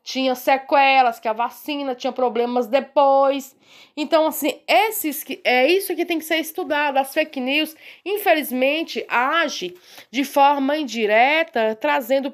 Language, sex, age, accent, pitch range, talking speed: Portuguese, female, 20-39, Brazilian, 240-295 Hz, 135 wpm